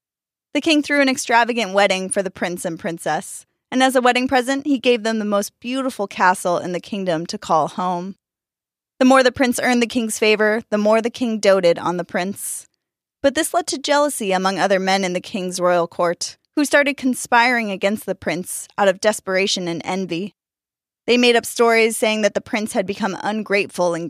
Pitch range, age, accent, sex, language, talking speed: 185-245 Hz, 20-39, American, female, English, 200 wpm